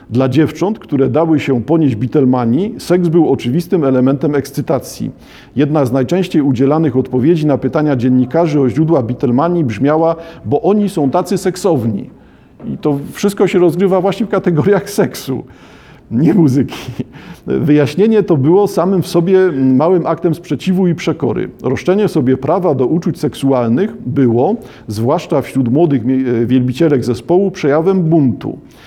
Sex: male